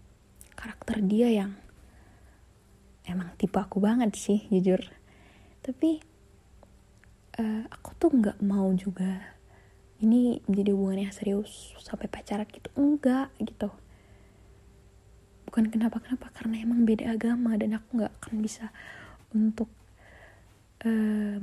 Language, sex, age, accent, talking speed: Indonesian, female, 20-39, native, 105 wpm